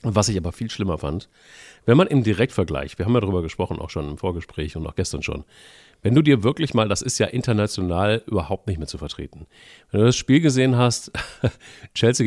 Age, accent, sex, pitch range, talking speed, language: 40-59, German, male, 95-135 Hz, 215 wpm, German